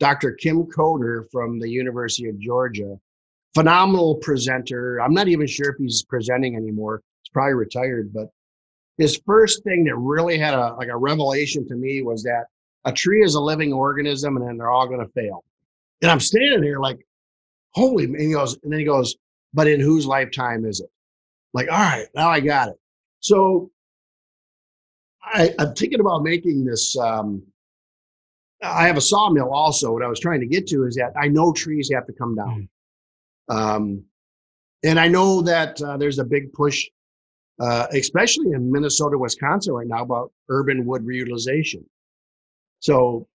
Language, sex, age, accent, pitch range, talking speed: English, male, 50-69, American, 115-150 Hz, 175 wpm